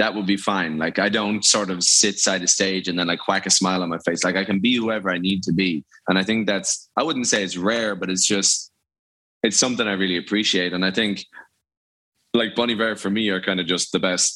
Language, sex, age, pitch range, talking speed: English, male, 20-39, 90-105 Hz, 260 wpm